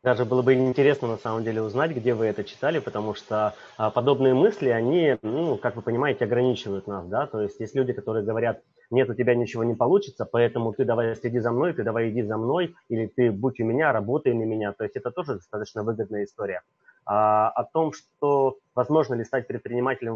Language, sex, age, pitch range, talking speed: Russian, male, 30-49, 105-125 Hz, 205 wpm